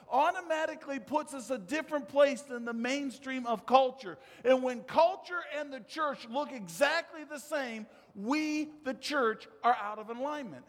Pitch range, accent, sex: 205-275 Hz, American, male